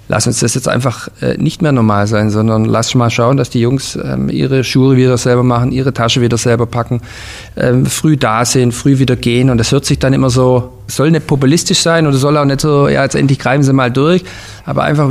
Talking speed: 225 wpm